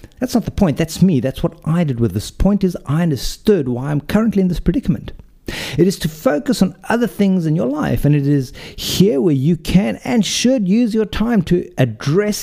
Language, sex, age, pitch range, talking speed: English, male, 50-69, 140-195 Hz, 220 wpm